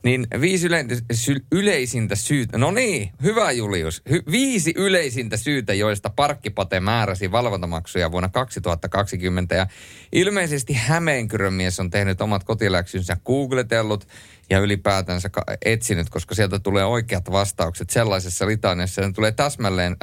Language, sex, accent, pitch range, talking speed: Finnish, male, native, 95-125 Hz, 125 wpm